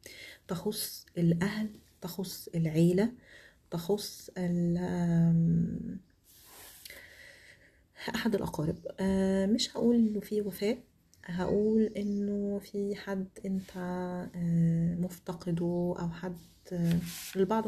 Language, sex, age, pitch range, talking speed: Arabic, female, 30-49, 170-195 Hz, 70 wpm